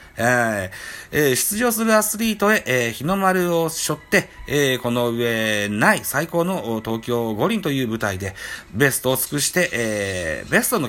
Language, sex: Japanese, male